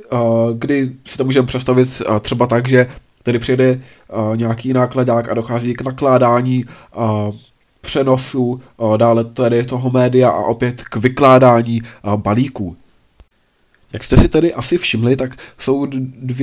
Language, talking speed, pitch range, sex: Czech, 125 wpm, 115-135 Hz, male